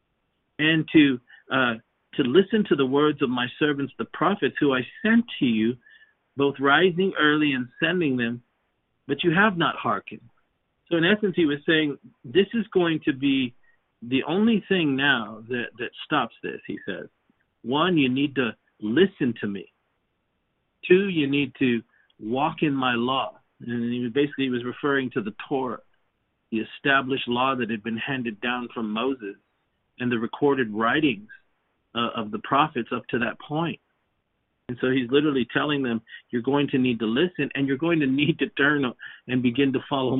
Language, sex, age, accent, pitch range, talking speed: English, male, 50-69, American, 125-155 Hz, 175 wpm